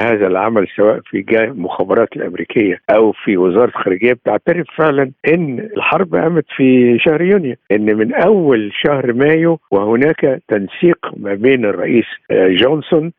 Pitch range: 110-145 Hz